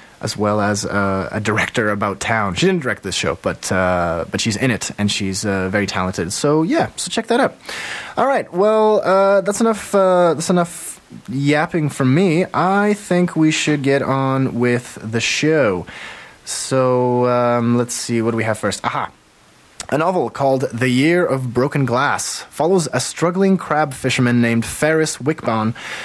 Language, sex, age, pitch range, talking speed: English, male, 20-39, 120-175 Hz, 175 wpm